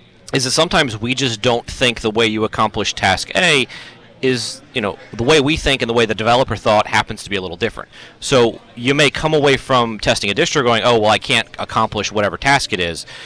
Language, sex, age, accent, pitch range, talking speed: English, male, 30-49, American, 110-140 Hz, 230 wpm